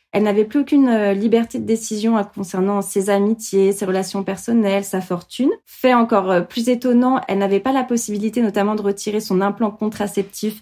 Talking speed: 170 wpm